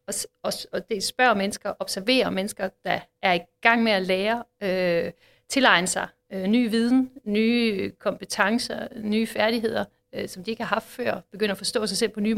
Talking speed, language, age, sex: 180 wpm, Danish, 60-79, female